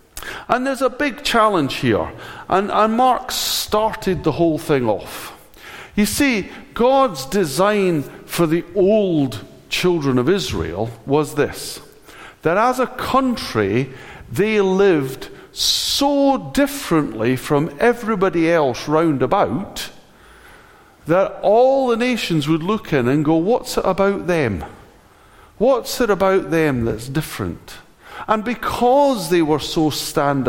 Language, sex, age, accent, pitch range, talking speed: English, male, 50-69, British, 125-205 Hz, 125 wpm